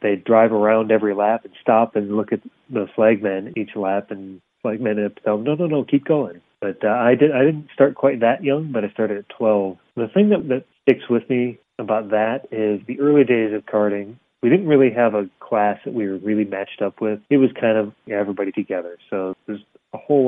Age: 30-49